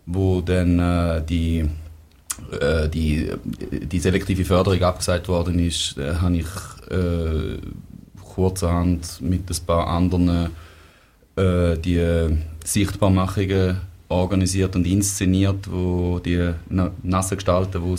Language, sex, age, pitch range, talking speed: German, male, 30-49, 85-95 Hz, 105 wpm